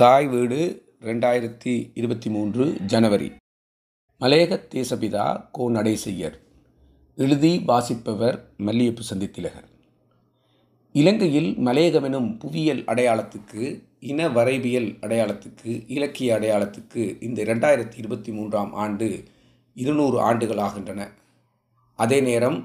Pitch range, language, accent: 110-130 Hz, Tamil, native